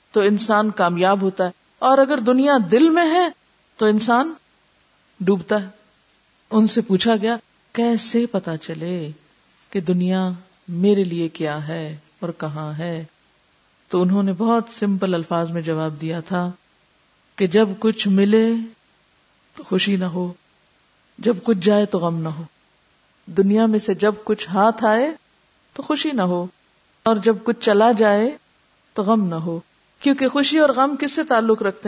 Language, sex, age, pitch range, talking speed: Urdu, female, 50-69, 180-225 Hz, 160 wpm